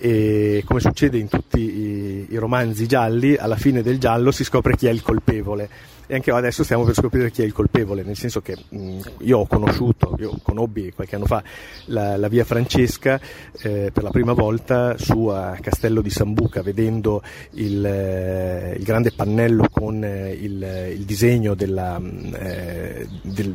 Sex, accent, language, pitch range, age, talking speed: male, native, Italian, 105-125 Hz, 30-49, 175 wpm